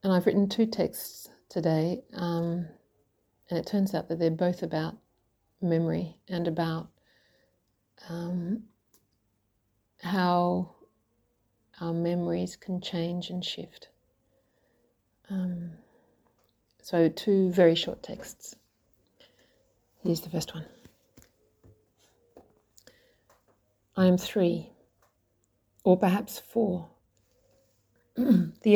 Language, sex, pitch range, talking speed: English, female, 160-195 Hz, 90 wpm